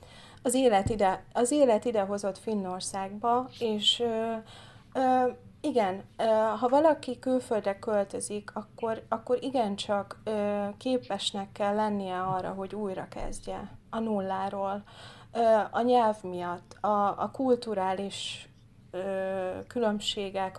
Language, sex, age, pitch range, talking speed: Hungarian, female, 30-49, 190-225 Hz, 100 wpm